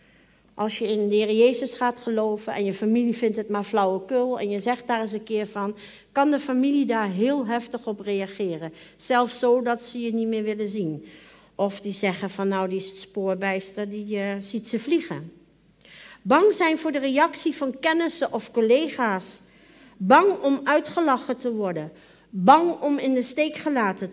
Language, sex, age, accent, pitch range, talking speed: Dutch, female, 50-69, Dutch, 200-265 Hz, 180 wpm